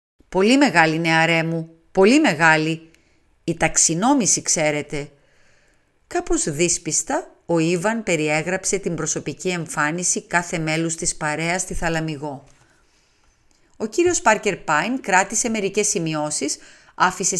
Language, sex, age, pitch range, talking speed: Greek, female, 40-59, 160-255 Hz, 105 wpm